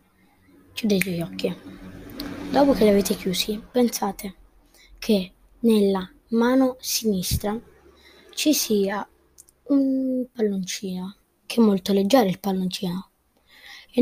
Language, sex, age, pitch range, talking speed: Italian, female, 20-39, 200-235 Hz, 105 wpm